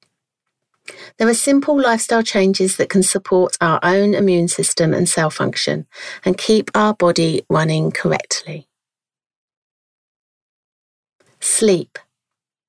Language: English